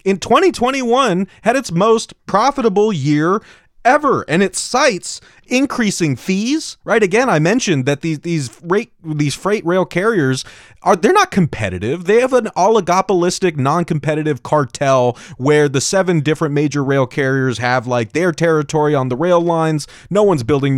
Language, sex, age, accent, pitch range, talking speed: English, male, 30-49, American, 130-175 Hz, 160 wpm